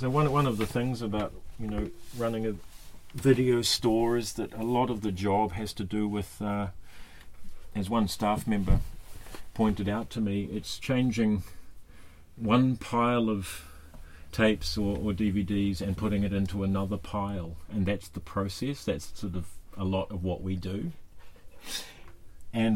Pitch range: 90-110 Hz